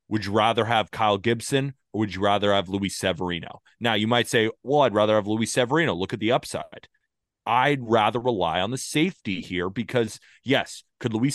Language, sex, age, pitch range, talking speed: English, male, 30-49, 100-140 Hz, 200 wpm